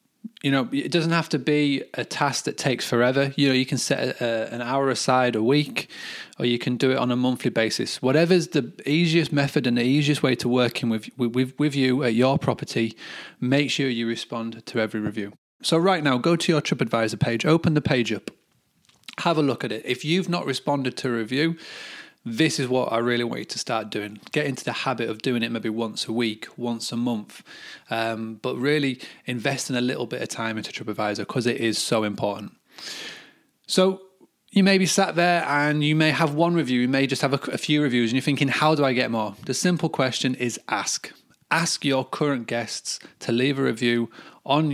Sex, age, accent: male, 30-49, British